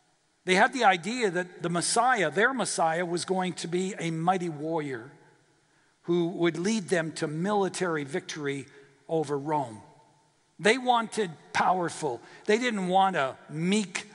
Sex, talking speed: male, 140 wpm